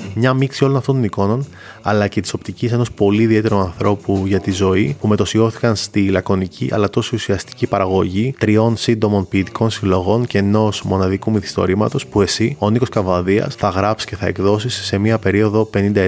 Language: Greek